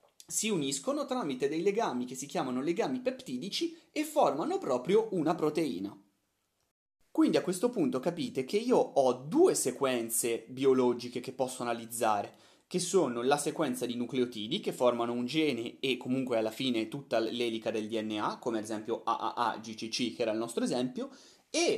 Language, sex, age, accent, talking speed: Italian, male, 30-49, native, 155 wpm